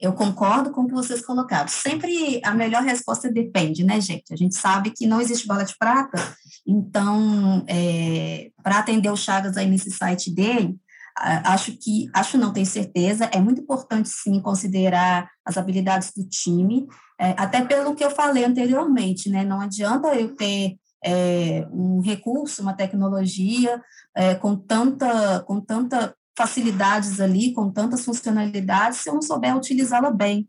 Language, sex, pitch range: Portuguese, female, 190-235 Hz